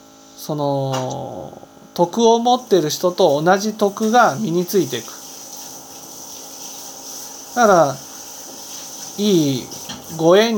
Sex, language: male, Japanese